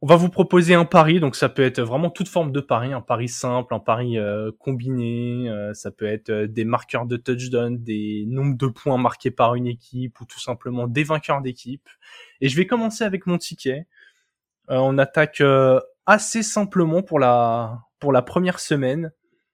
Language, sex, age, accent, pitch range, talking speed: French, male, 20-39, French, 120-150 Hz, 195 wpm